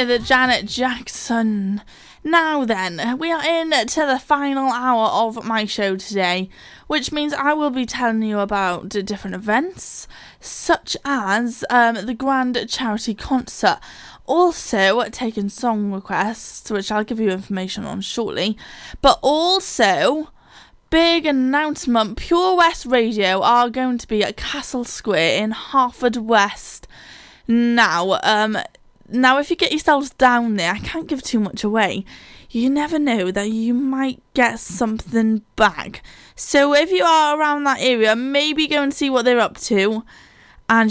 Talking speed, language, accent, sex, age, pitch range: 150 wpm, English, British, female, 10-29, 210-275 Hz